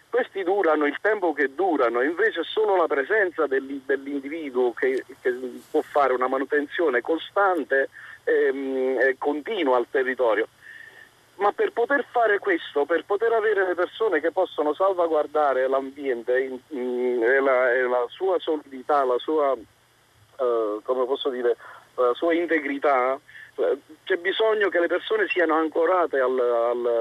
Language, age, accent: Italian, 40-59, native